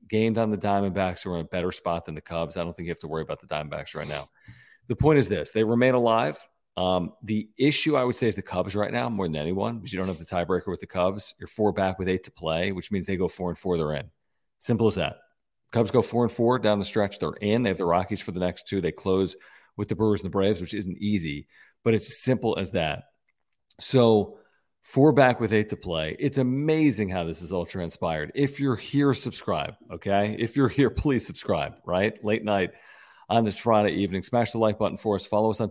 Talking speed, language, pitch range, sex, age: 250 wpm, English, 90-110 Hz, male, 40-59